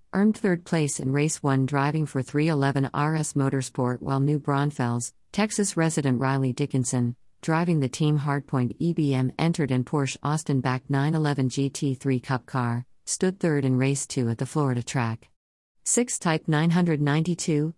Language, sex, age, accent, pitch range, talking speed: English, female, 50-69, American, 135-160 Hz, 145 wpm